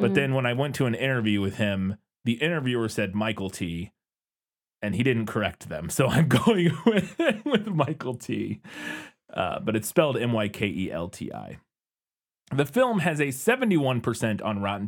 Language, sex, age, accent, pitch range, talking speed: English, male, 30-49, American, 110-165 Hz, 160 wpm